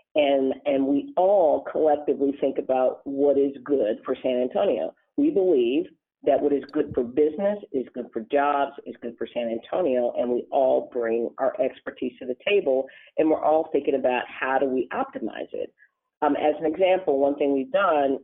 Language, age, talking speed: English, 40-59, 190 wpm